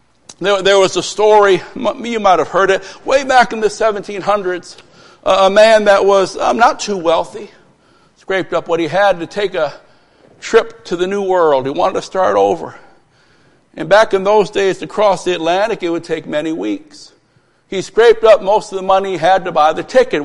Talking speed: 200 wpm